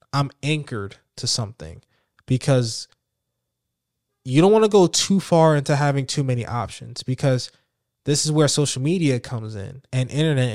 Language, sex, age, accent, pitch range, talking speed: English, male, 20-39, American, 120-150 Hz, 155 wpm